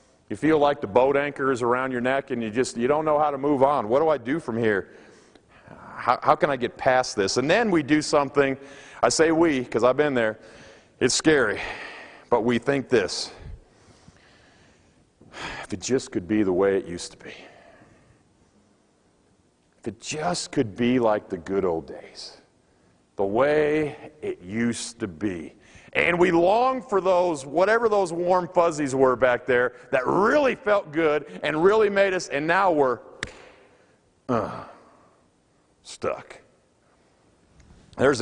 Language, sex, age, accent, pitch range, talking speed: English, male, 40-59, American, 110-150 Hz, 160 wpm